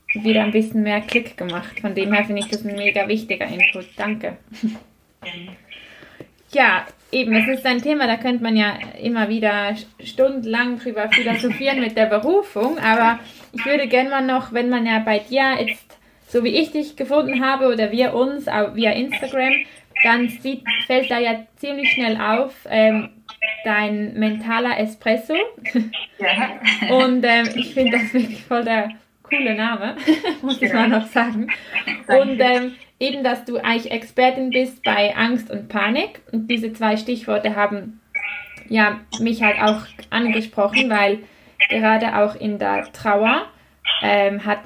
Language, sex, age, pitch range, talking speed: German, female, 20-39, 210-250 Hz, 155 wpm